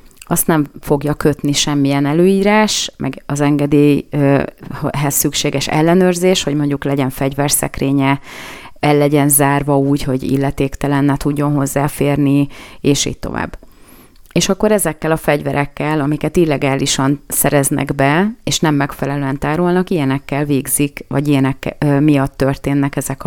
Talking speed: 120 wpm